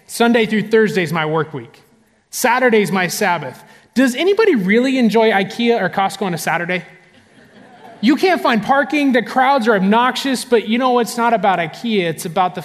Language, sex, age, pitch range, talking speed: English, male, 20-39, 150-205 Hz, 185 wpm